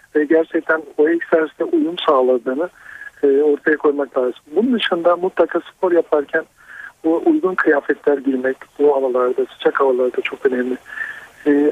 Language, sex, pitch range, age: Turkish, male, 140-180 Hz, 50-69